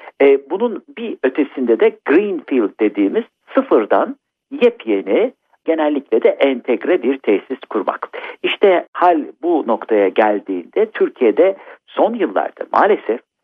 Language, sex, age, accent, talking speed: Turkish, male, 60-79, native, 105 wpm